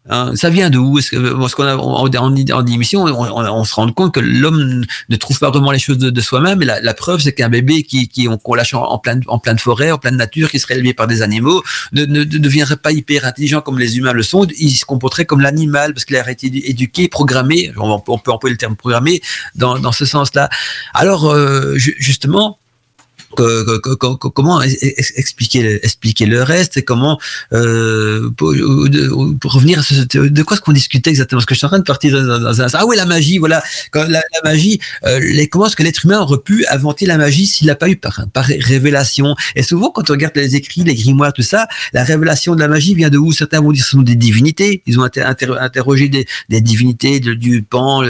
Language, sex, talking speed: French, male, 240 wpm